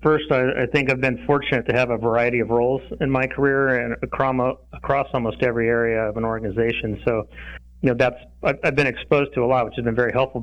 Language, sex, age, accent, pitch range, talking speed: English, male, 30-49, American, 115-130 Hz, 230 wpm